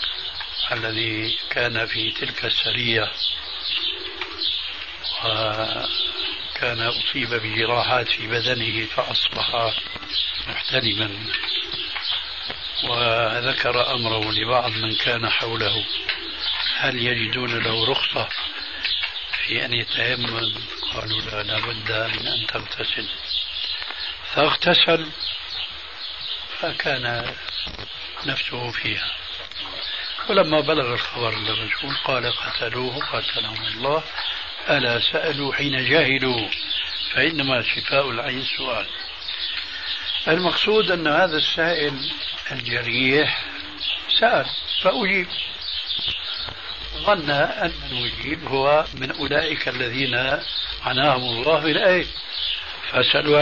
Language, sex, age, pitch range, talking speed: Arabic, male, 60-79, 115-150 Hz, 75 wpm